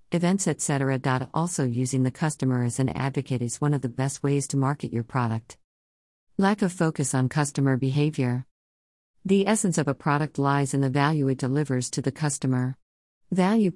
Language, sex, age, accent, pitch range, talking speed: English, female, 50-69, American, 130-155 Hz, 175 wpm